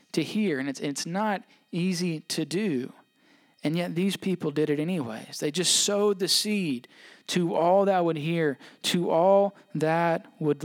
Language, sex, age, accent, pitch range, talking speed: English, male, 40-59, American, 165-215 Hz, 170 wpm